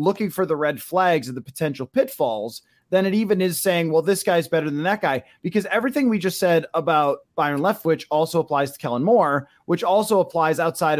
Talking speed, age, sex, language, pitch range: 205 wpm, 20-39, male, English, 145-190 Hz